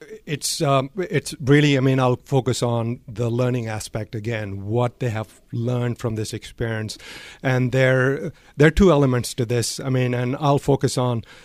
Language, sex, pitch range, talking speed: English, male, 115-140 Hz, 180 wpm